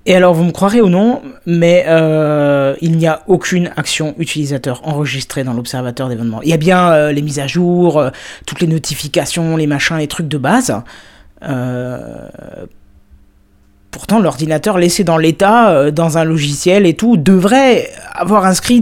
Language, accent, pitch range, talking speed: French, French, 135-175 Hz, 165 wpm